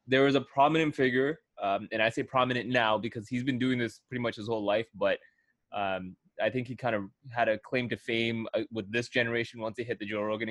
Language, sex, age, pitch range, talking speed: English, male, 20-39, 105-130 Hz, 245 wpm